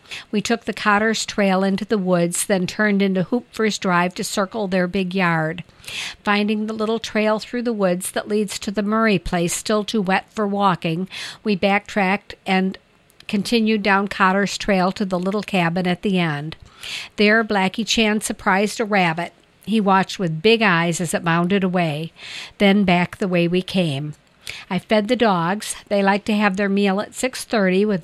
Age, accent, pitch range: 50-69, American, 185-215 Hz